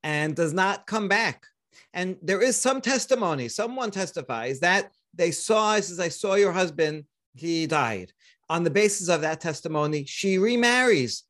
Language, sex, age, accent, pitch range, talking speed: English, male, 40-59, American, 140-190 Hz, 160 wpm